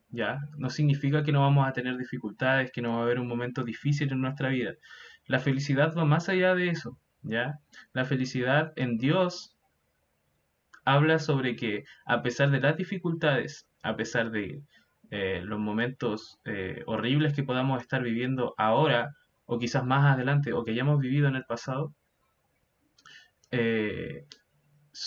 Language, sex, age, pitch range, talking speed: Spanish, male, 20-39, 120-155 Hz, 155 wpm